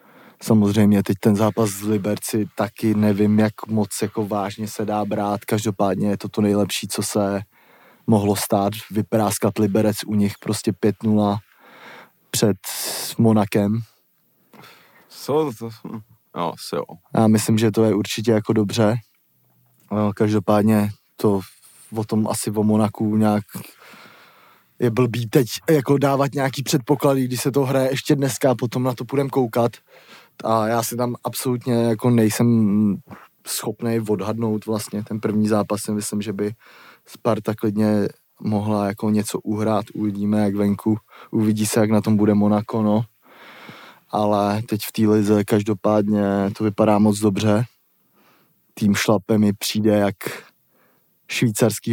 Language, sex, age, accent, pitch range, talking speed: Czech, male, 20-39, native, 105-115 Hz, 135 wpm